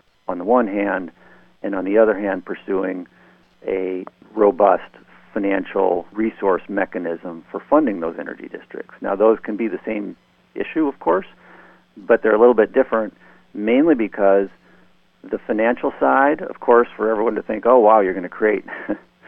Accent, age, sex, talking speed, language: American, 50-69, male, 160 wpm, English